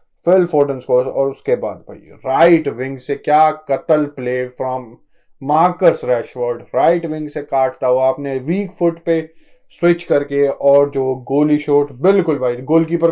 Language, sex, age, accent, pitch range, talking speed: Hindi, male, 20-39, native, 135-165 Hz, 140 wpm